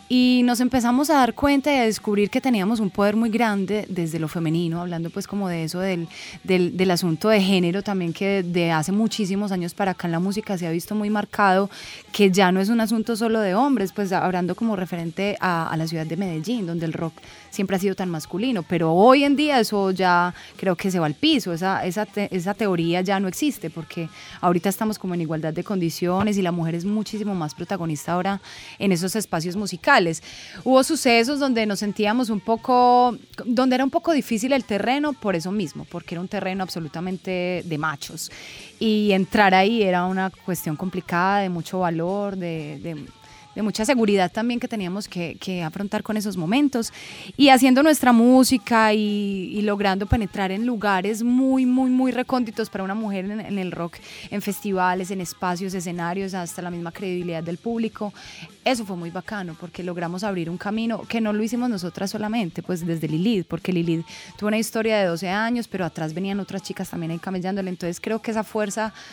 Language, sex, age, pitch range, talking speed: Spanish, female, 20-39, 175-220 Hz, 200 wpm